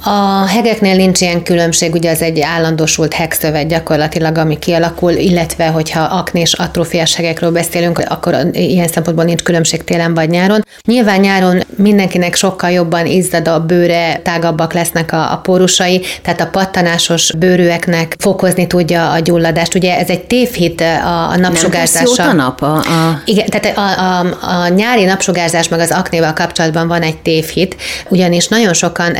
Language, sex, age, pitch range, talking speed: Hungarian, female, 30-49, 165-185 Hz, 155 wpm